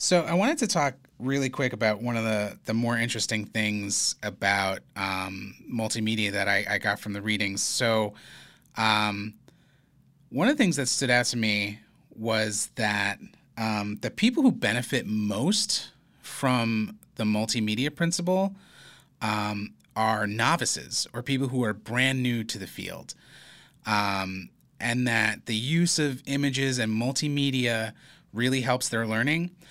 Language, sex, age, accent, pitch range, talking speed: English, male, 30-49, American, 105-140 Hz, 145 wpm